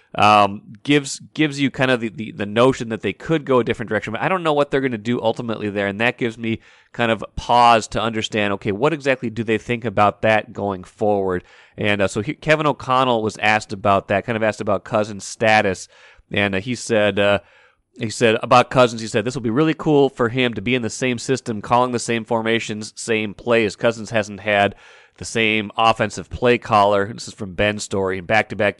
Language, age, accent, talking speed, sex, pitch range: English, 30-49, American, 225 wpm, male, 105-125 Hz